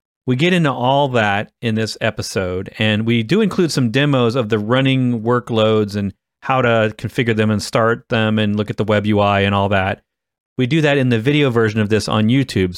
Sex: male